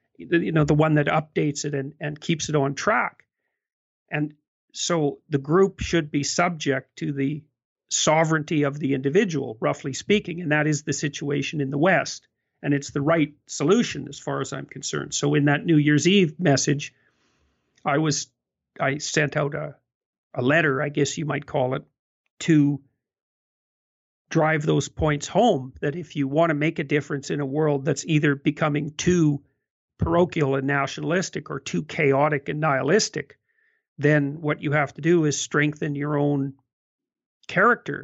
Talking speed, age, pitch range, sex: 165 wpm, 50-69, 140-160 Hz, male